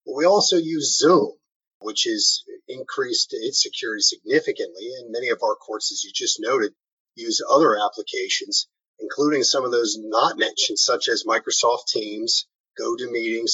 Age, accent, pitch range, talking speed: 40-59, American, 350-450 Hz, 145 wpm